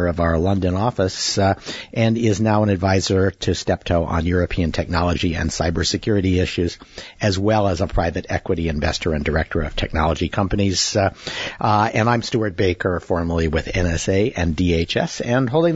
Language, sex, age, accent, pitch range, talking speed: English, male, 60-79, American, 95-120 Hz, 165 wpm